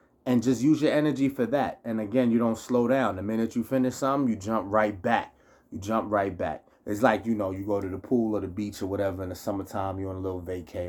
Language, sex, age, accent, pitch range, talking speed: English, male, 30-49, American, 95-120 Hz, 265 wpm